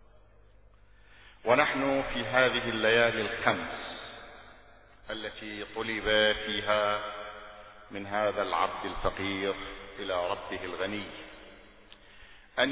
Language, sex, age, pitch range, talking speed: Arabic, male, 50-69, 105-125 Hz, 75 wpm